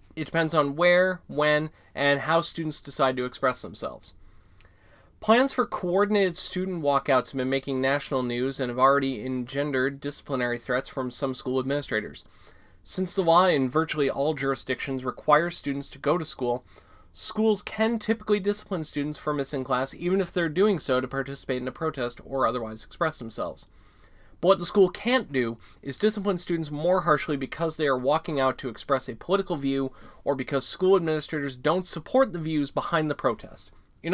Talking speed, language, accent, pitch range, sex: 175 wpm, English, American, 130-170 Hz, male